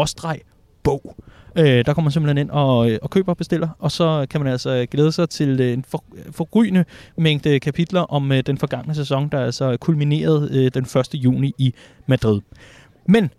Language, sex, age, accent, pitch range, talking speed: Danish, male, 30-49, native, 130-165 Hz, 160 wpm